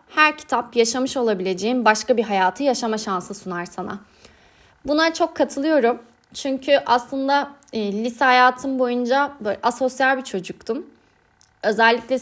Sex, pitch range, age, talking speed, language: female, 220-275 Hz, 30-49, 120 wpm, Turkish